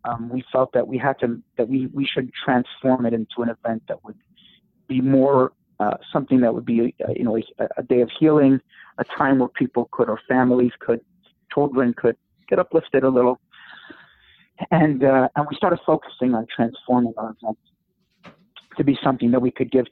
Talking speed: 195 wpm